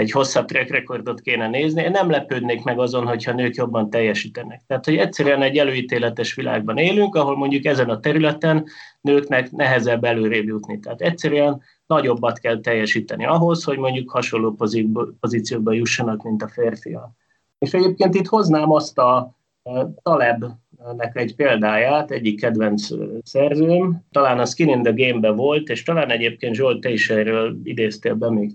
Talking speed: 150 wpm